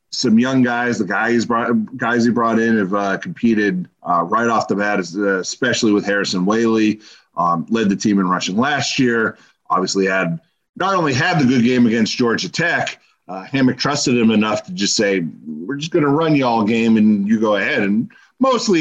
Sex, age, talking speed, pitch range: male, 40-59, 205 wpm, 100-140 Hz